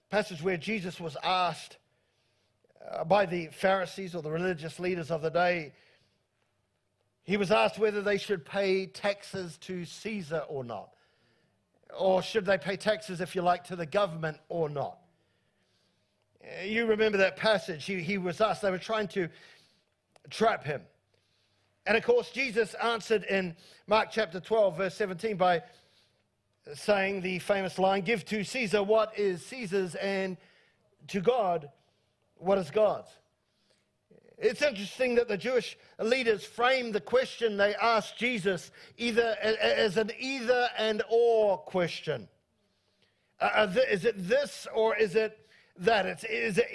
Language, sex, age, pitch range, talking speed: English, male, 50-69, 180-230 Hz, 140 wpm